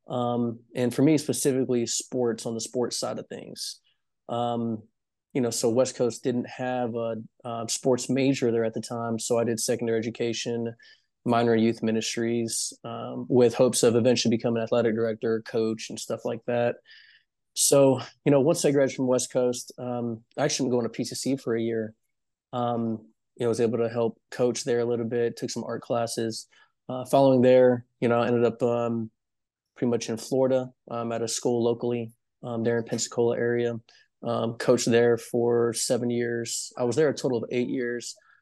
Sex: male